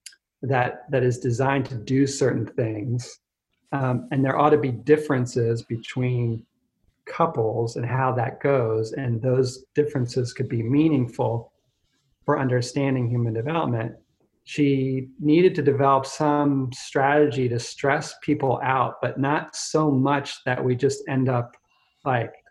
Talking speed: 135 wpm